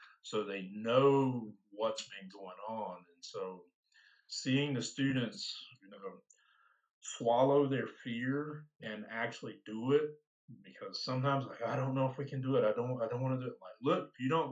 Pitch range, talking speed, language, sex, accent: 105-130 Hz, 185 wpm, English, male, American